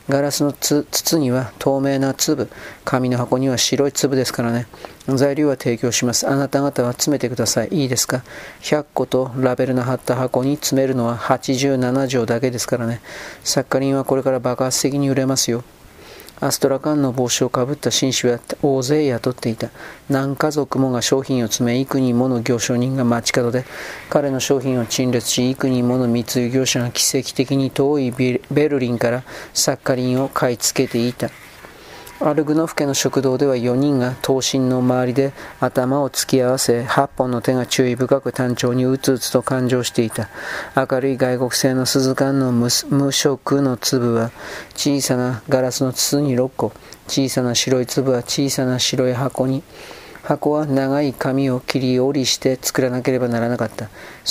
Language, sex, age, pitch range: Japanese, male, 40-59, 125-135 Hz